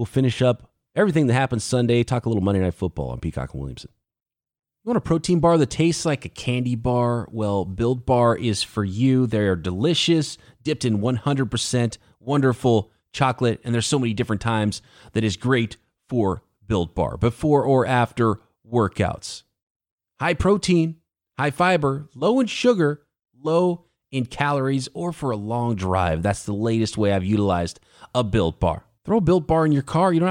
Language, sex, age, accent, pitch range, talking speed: English, male, 30-49, American, 110-155 Hz, 180 wpm